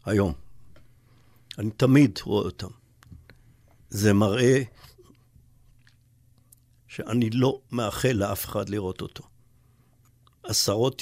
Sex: male